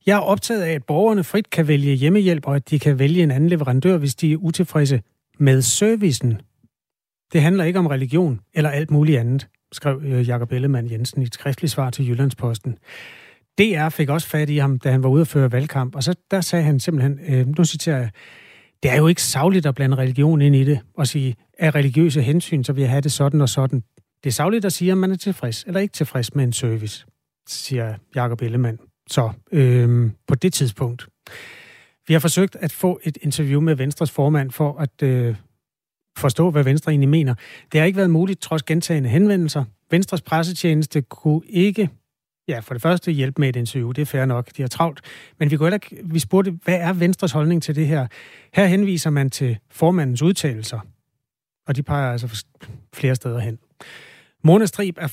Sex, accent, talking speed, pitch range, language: male, native, 205 wpm, 130-170 Hz, Danish